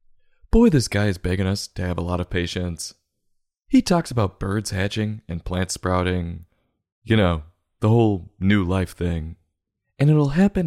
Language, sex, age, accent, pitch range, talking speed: English, male, 30-49, American, 90-115 Hz, 170 wpm